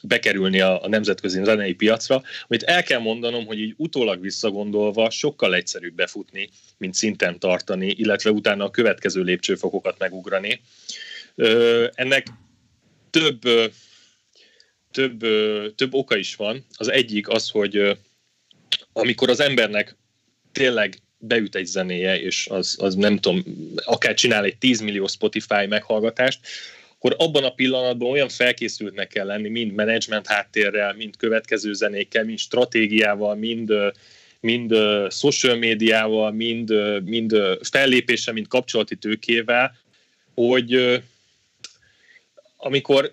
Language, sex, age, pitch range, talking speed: Hungarian, male, 30-49, 105-125 Hz, 120 wpm